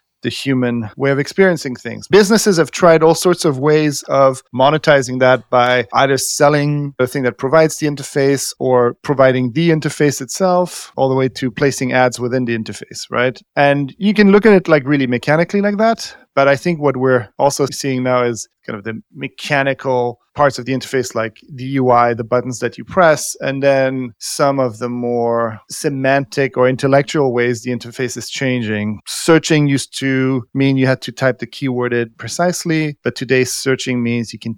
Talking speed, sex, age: 185 wpm, male, 30-49